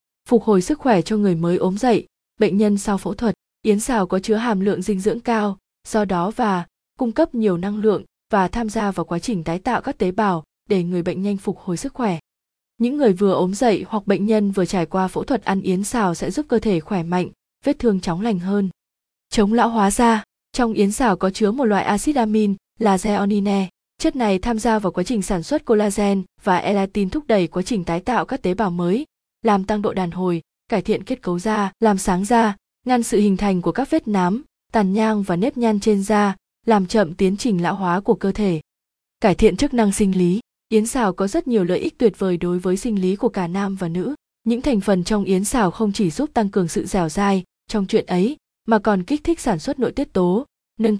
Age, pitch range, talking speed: 20-39, 185-230 Hz, 240 wpm